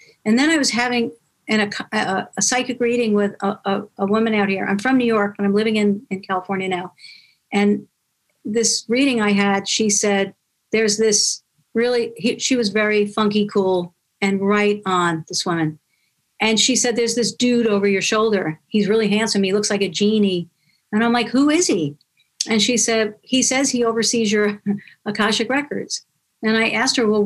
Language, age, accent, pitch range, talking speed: English, 50-69, American, 200-230 Hz, 195 wpm